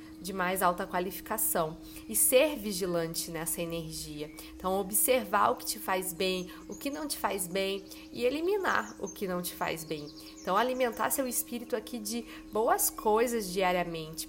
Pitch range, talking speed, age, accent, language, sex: 165-210 Hz, 165 wpm, 20-39, Brazilian, Portuguese, female